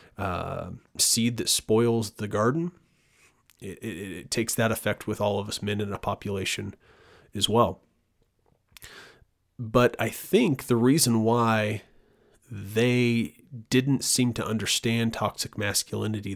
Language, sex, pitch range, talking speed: English, male, 100-115 Hz, 130 wpm